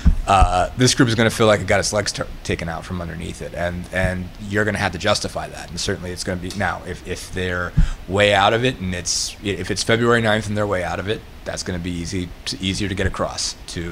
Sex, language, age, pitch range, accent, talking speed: male, English, 30-49, 90-105 Hz, American, 270 wpm